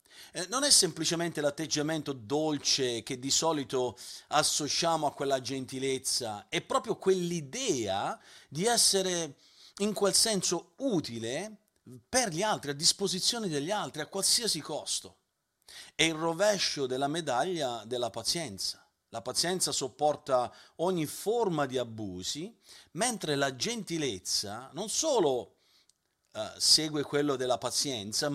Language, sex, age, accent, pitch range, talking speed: Italian, male, 40-59, native, 135-185 Hz, 115 wpm